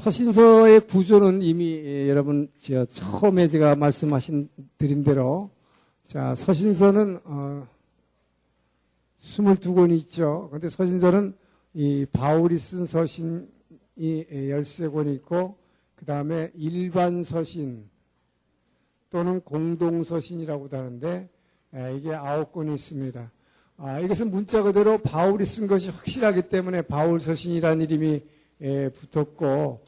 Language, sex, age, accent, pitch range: Korean, male, 50-69, native, 145-185 Hz